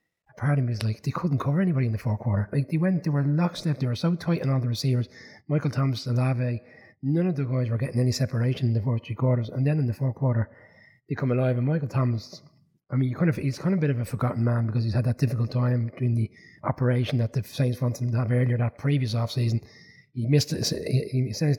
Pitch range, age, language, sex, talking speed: 115-135 Hz, 30-49, English, male, 265 wpm